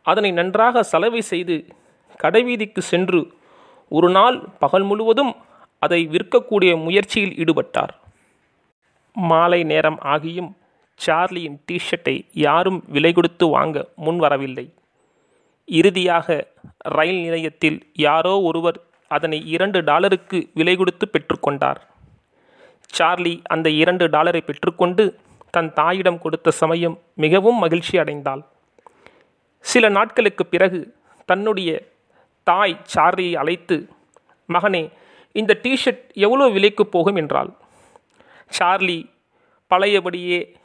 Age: 30-49